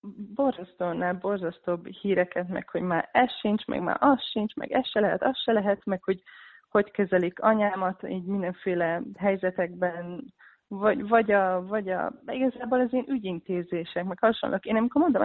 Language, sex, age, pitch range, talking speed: Hungarian, female, 20-39, 175-225 Hz, 160 wpm